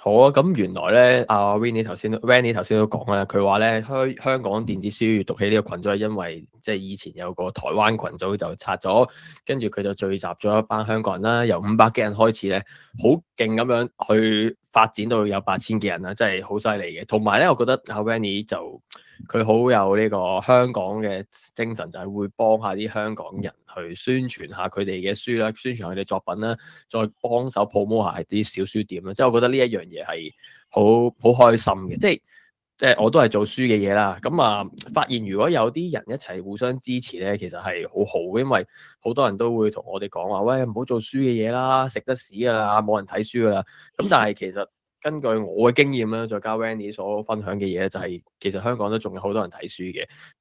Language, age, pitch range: Chinese, 20-39, 100-120 Hz